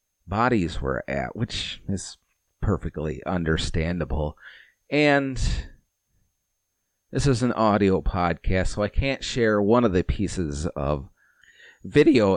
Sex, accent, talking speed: male, American, 110 wpm